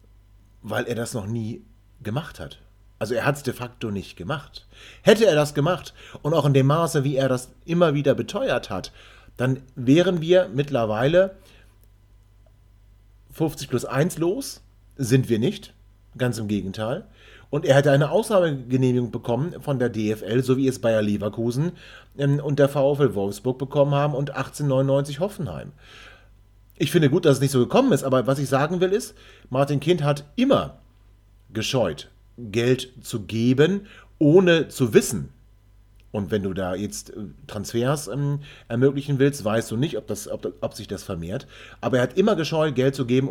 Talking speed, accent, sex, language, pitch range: 165 wpm, German, male, German, 105-145 Hz